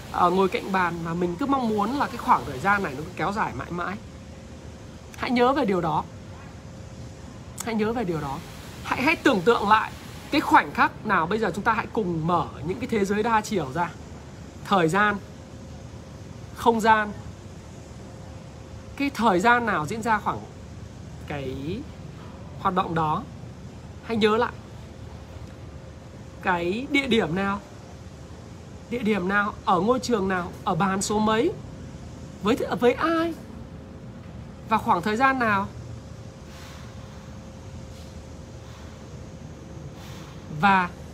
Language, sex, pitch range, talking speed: Vietnamese, male, 165-240 Hz, 140 wpm